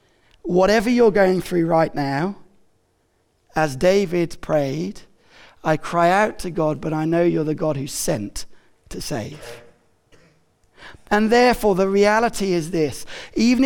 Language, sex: English, male